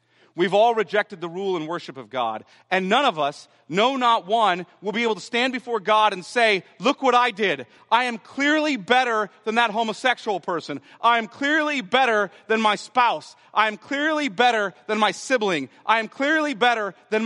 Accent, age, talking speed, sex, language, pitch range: American, 40-59, 195 wpm, male, English, 175-235 Hz